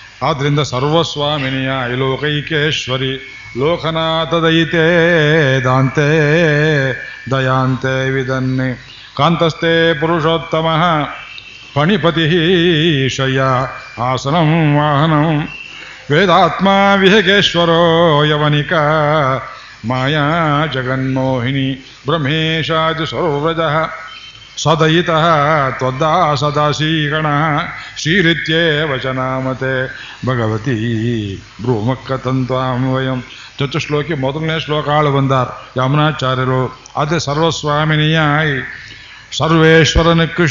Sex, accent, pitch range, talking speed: male, native, 130-165 Hz, 50 wpm